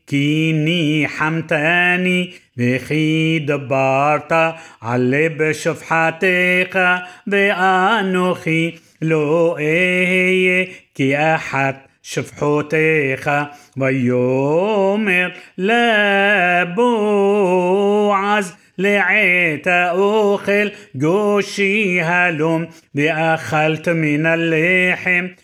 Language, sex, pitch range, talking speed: Hebrew, male, 155-185 Hz, 50 wpm